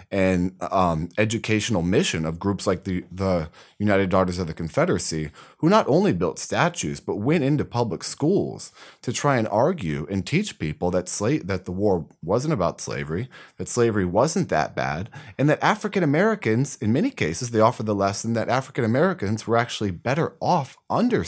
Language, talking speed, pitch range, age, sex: English, 180 wpm, 85-110 Hz, 30-49, male